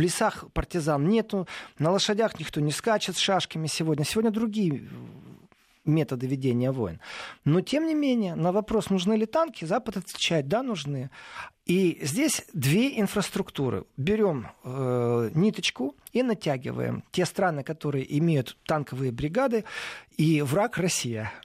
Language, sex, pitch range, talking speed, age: Russian, male, 140-190 Hz, 135 wpm, 40-59